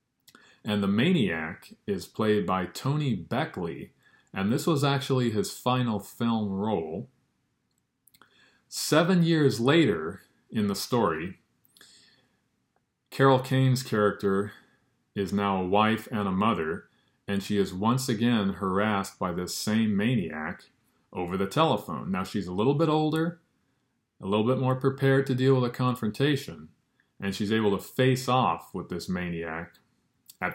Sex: male